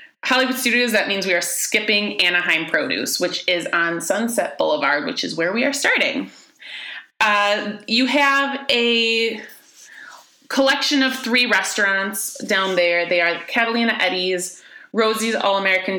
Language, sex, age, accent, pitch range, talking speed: English, female, 20-39, American, 180-245 Hz, 135 wpm